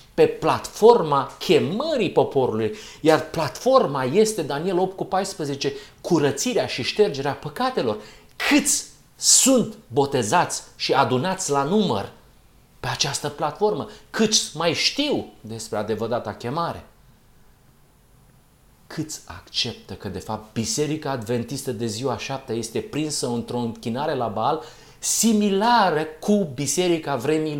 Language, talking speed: Romanian, 105 wpm